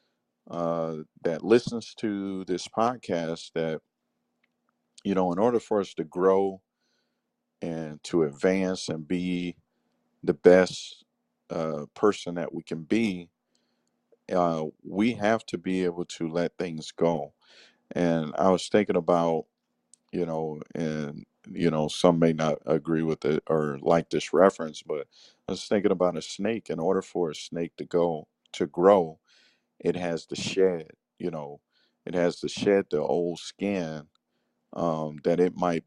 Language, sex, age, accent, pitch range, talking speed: English, male, 50-69, American, 80-95 Hz, 150 wpm